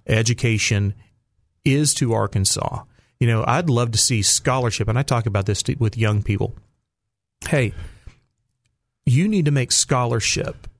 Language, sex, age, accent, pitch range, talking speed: English, male, 30-49, American, 110-135 Hz, 140 wpm